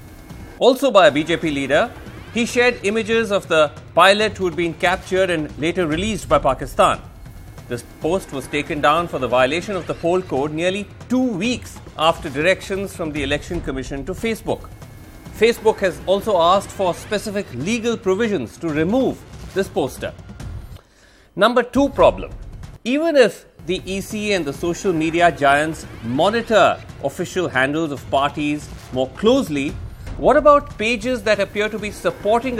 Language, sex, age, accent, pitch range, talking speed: English, male, 30-49, Indian, 150-215 Hz, 150 wpm